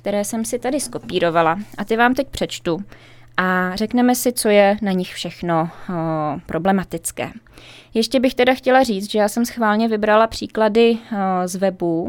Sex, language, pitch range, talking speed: female, Czech, 170-210 Hz, 160 wpm